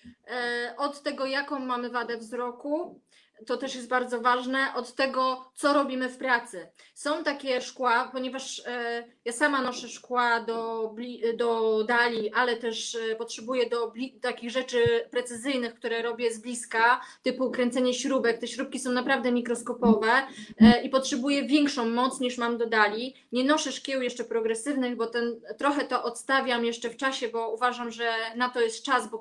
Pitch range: 235-265 Hz